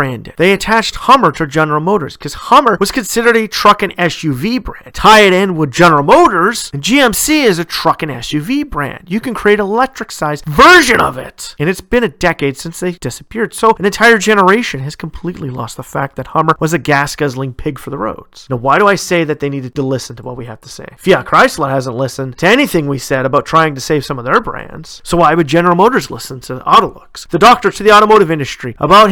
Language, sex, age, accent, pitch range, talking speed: English, male, 30-49, American, 140-215 Hz, 230 wpm